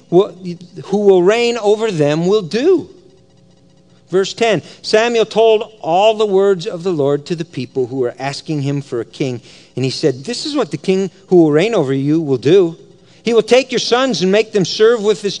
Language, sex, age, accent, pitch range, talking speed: English, male, 50-69, American, 155-230 Hz, 205 wpm